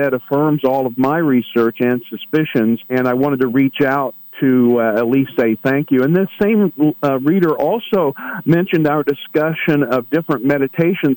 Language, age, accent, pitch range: English, 50-69, American, 130-155 Hz